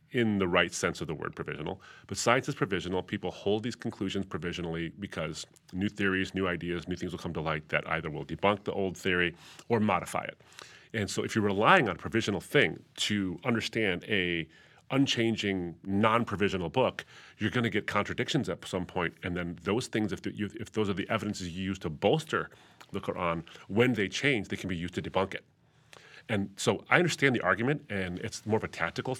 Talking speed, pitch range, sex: 205 wpm, 90-115 Hz, male